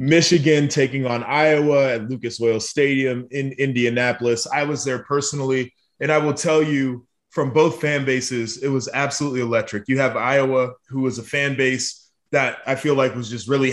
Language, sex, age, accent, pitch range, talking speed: English, male, 20-39, American, 120-145 Hz, 185 wpm